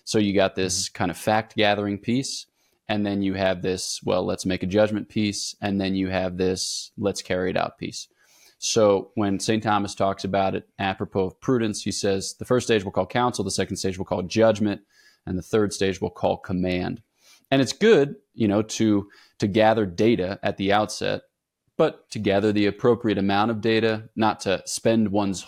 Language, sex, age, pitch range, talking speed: English, male, 20-39, 95-110 Hz, 200 wpm